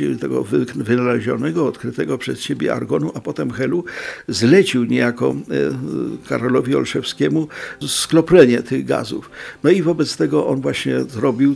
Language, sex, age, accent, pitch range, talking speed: Polish, male, 50-69, native, 130-160 Hz, 120 wpm